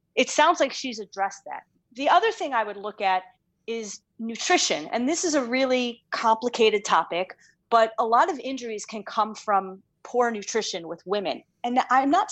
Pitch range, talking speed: 195-245 Hz, 180 wpm